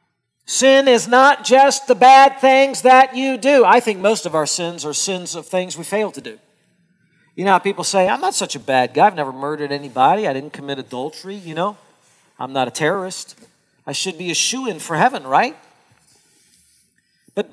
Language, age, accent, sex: English, 40-59, American, male